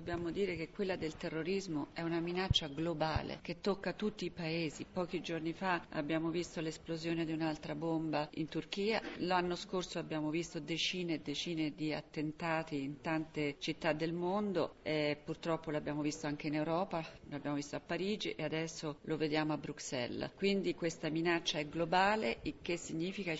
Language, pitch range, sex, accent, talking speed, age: Italian, 155-185 Hz, female, native, 165 wpm, 40-59